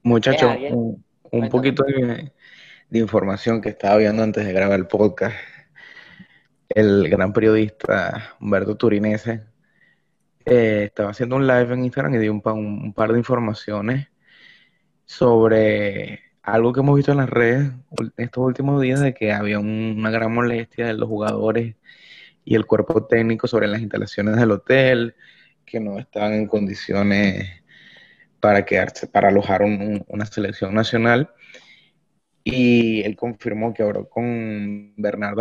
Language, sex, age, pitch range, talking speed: Spanish, male, 20-39, 105-120 Hz, 140 wpm